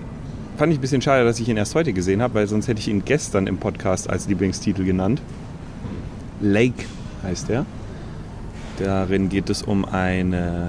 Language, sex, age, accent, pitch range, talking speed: German, male, 30-49, German, 95-120 Hz, 175 wpm